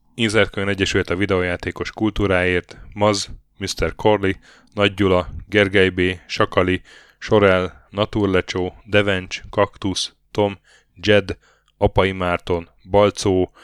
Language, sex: Hungarian, male